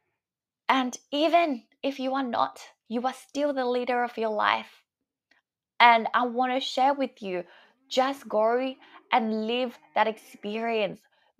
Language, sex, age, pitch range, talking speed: English, female, 20-39, 200-255 Hz, 140 wpm